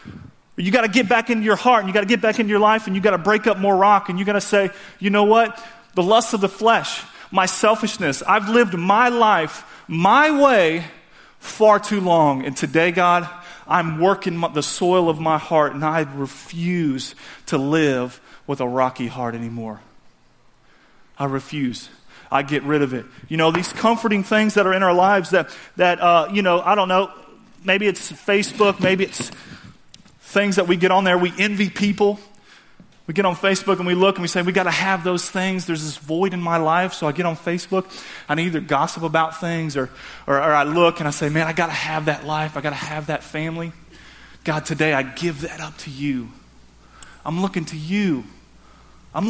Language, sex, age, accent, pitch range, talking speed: English, male, 30-49, American, 155-210 Hz, 210 wpm